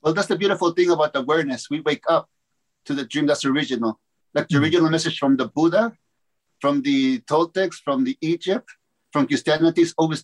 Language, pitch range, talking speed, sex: English, 140-170 Hz, 190 wpm, male